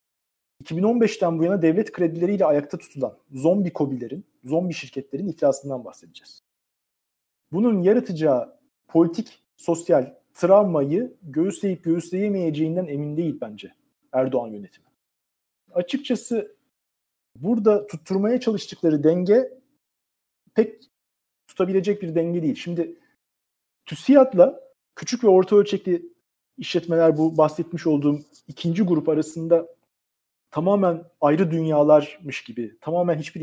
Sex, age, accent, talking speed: male, 40-59, native, 95 wpm